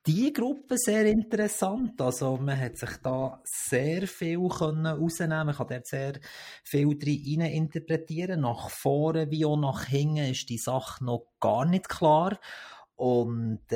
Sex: male